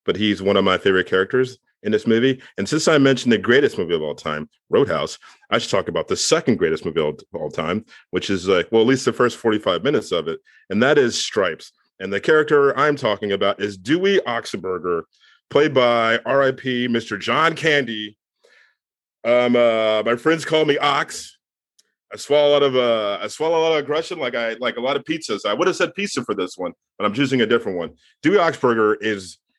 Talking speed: 205 wpm